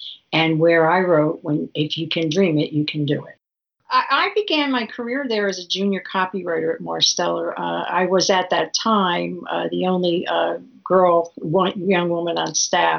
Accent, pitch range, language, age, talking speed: American, 160-200 Hz, English, 50-69, 185 wpm